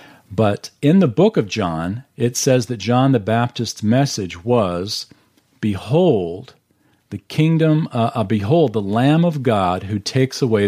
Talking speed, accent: 150 wpm, American